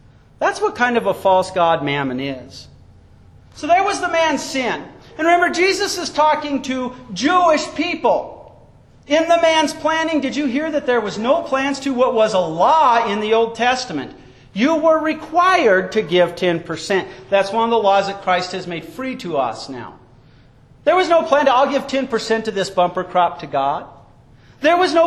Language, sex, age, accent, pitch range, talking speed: English, male, 40-59, American, 185-300 Hz, 190 wpm